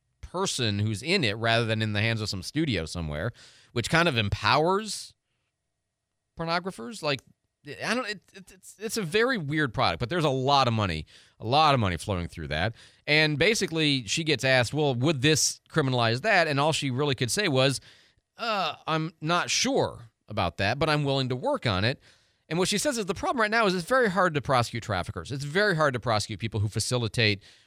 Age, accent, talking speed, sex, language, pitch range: 40-59, American, 210 wpm, male, English, 105-140 Hz